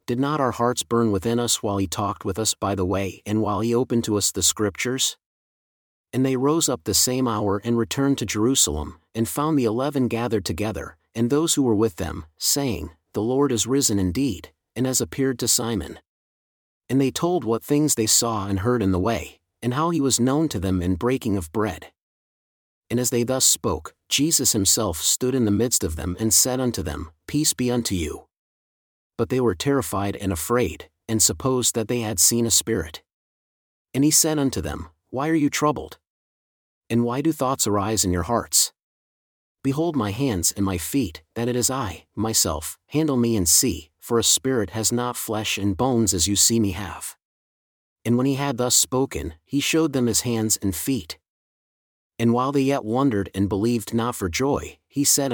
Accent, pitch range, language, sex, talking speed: American, 95-130 Hz, English, male, 200 wpm